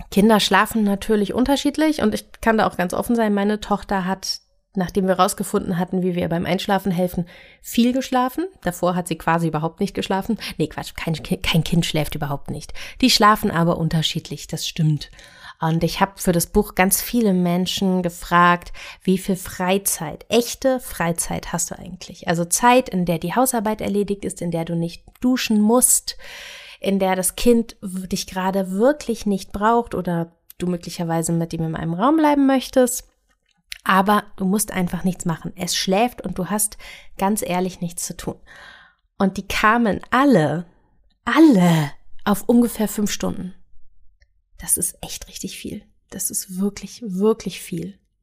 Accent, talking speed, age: German, 165 wpm, 30-49